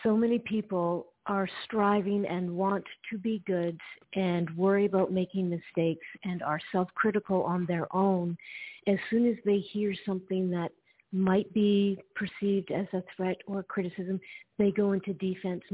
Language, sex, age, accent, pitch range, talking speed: English, female, 50-69, American, 175-200 Hz, 155 wpm